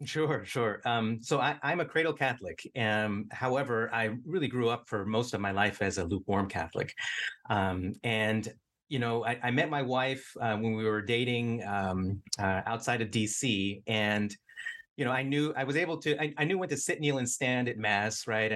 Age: 30-49